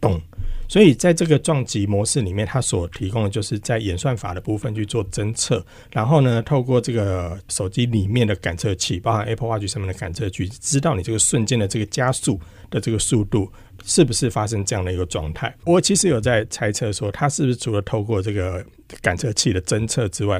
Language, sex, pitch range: Chinese, male, 100-130 Hz